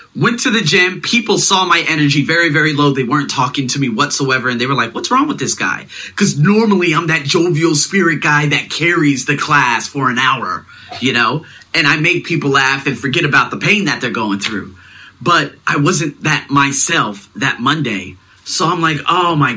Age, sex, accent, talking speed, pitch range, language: 30-49, male, American, 210 wpm, 140-225 Hz, English